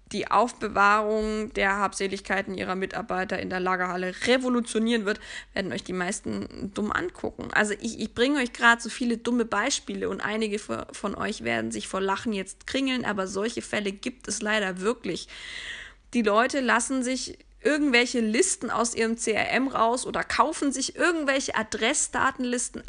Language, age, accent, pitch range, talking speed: German, 20-39, German, 210-270 Hz, 155 wpm